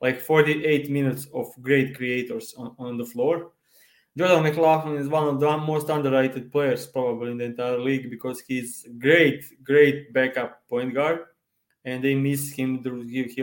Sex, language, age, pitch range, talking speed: male, English, 20-39, 130-150 Hz, 160 wpm